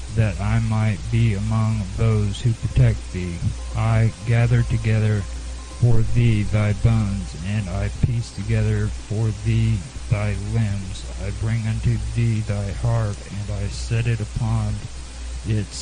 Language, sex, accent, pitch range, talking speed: English, male, American, 95-120 Hz, 135 wpm